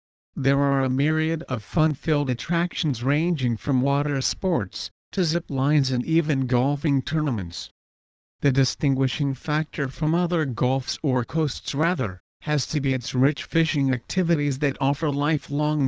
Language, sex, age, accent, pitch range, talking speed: English, male, 50-69, American, 130-155 Hz, 140 wpm